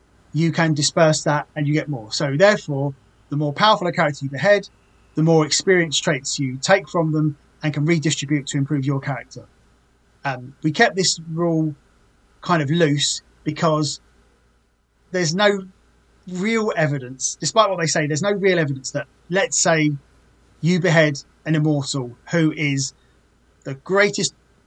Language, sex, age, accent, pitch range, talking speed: English, male, 30-49, British, 140-170 Hz, 155 wpm